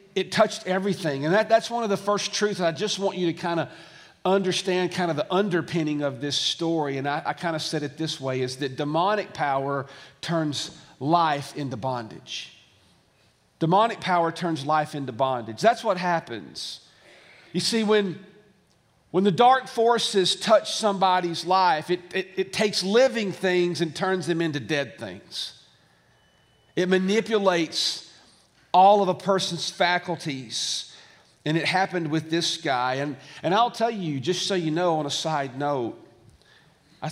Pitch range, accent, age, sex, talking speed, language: 145-190 Hz, American, 40-59, male, 165 wpm, English